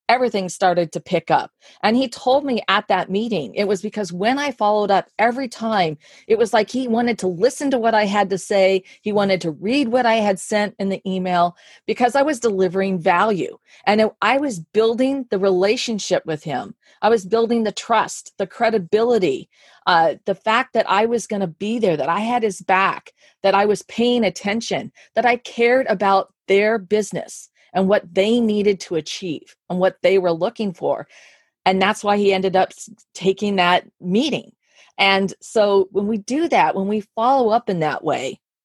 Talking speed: 195 wpm